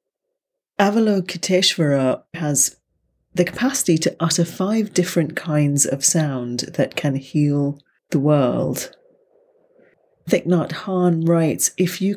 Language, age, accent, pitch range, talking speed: English, 30-49, British, 140-185 Hz, 110 wpm